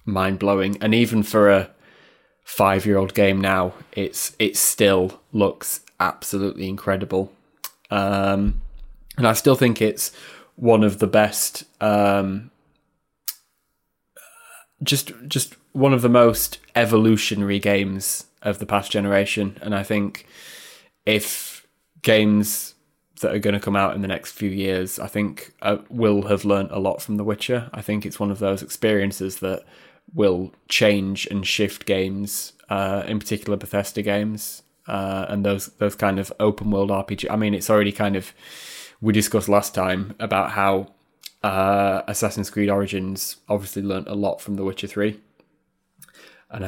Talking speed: 150 wpm